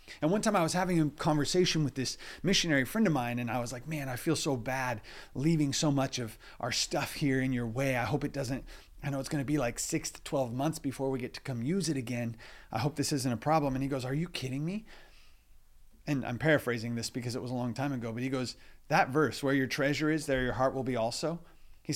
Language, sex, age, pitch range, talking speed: English, male, 30-49, 125-155 Hz, 260 wpm